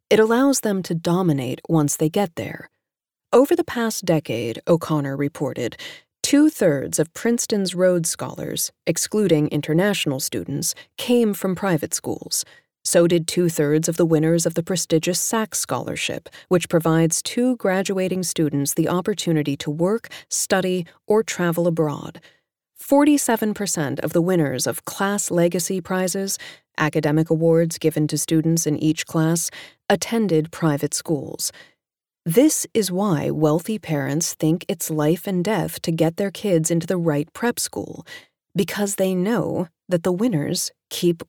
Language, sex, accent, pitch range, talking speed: English, female, American, 160-205 Hz, 140 wpm